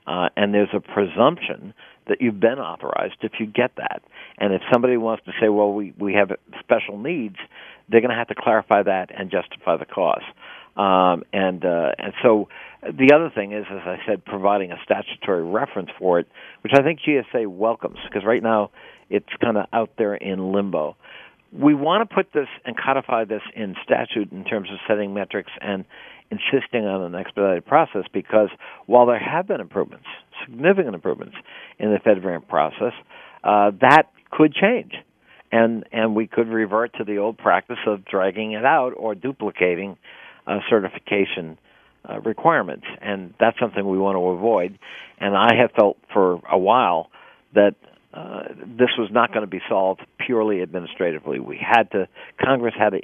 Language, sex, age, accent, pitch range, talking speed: English, male, 50-69, American, 95-115 Hz, 180 wpm